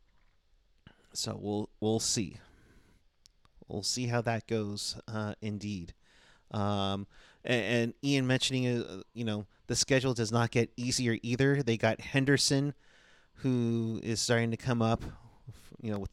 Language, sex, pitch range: English, male, 105-125 Hz